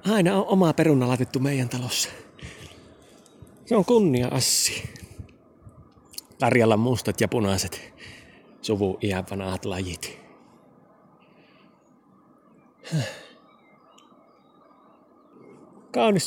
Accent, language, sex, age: native, Finnish, male, 30-49